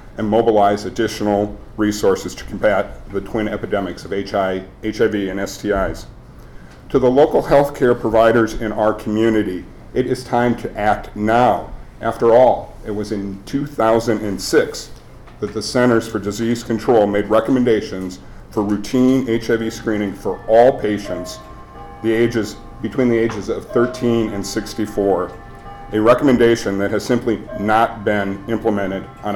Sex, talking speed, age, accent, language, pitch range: male, 130 wpm, 50-69, American, English, 105-125 Hz